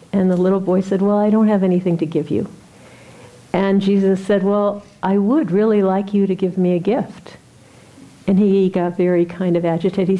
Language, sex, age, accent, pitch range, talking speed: English, female, 50-69, American, 180-225 Hz, 205 wpm